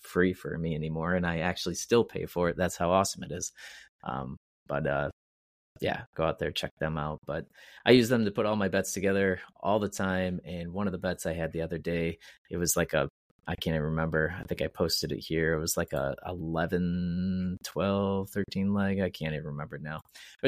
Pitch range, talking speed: 80-95 Hz, 225 wpm